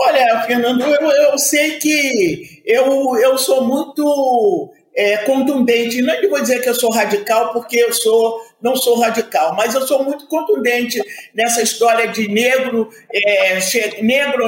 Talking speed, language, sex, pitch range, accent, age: 135 wpm, Portuguese, male, 230-280 Hz, Brazilian, 50-69